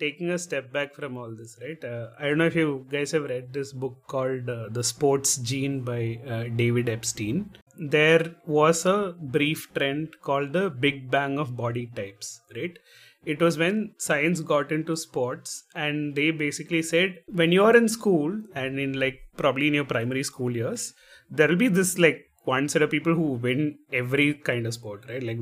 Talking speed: 195 wpm